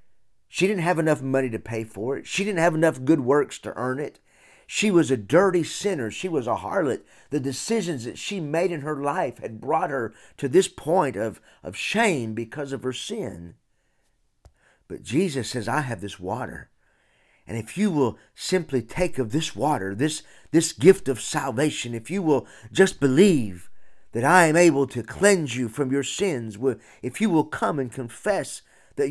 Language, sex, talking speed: English, male, 190 wpm